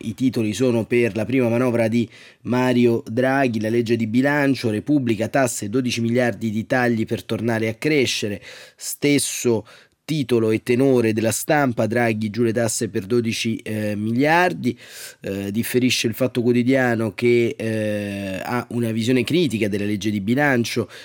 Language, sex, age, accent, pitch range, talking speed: Italian, male, 30-49, native, 115-130 Hz, 150 wpm